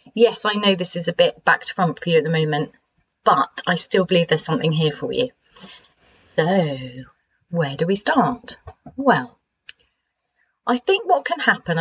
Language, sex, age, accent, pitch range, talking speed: English, female, 30-49, British, 165-240 Hz, 180 wpm